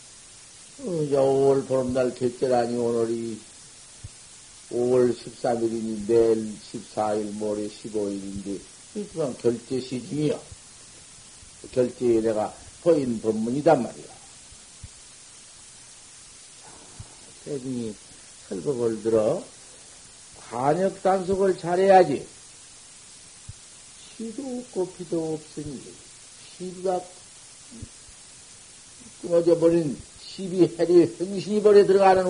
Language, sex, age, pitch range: Korean, male, 50-69, 120-175 Hz